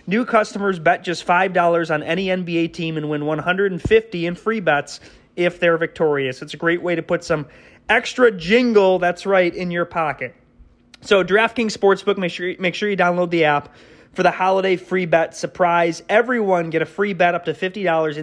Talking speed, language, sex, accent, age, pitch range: 185 wpm, English, male, American, 30-49, 155-200 Hz